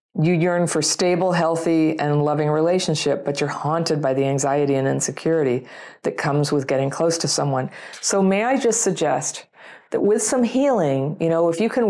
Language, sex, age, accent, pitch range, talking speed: English, female, 40-59, American, 145-185 Hz, 185 wpm